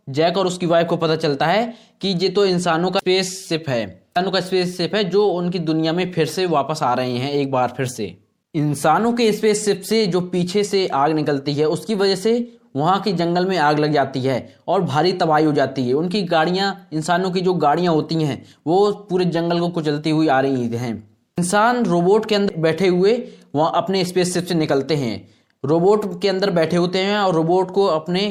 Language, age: Hindi, 20-39